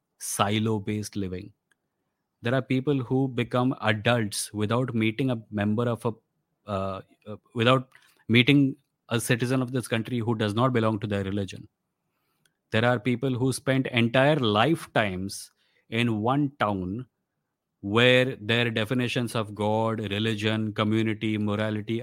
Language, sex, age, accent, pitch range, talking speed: English, male, 30-49, Indian, 110-130 Hz, 130 wpm